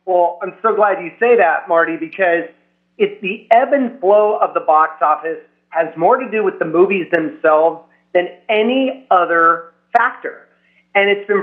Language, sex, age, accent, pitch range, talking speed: English, male, 30-49, American, 170-215 Hz, 175 wpm